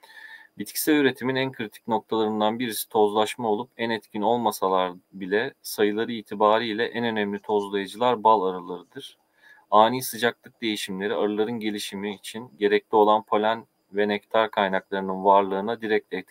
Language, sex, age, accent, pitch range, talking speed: Turkish, male, 40-59, native, 105-120 Hz, 120 wpm